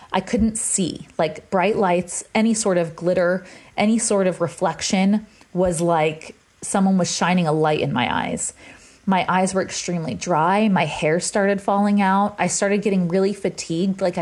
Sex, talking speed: female, 170 wpm